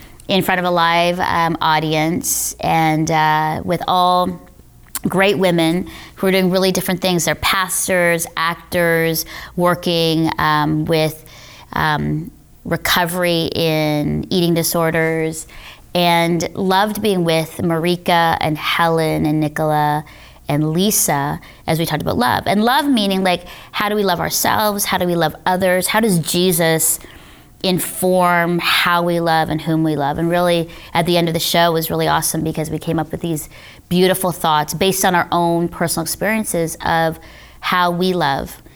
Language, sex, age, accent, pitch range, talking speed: English, female, 30-49, American, 160-180 Hz, 155 wpm